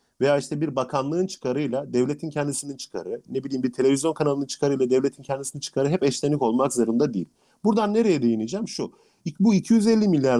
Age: 40-59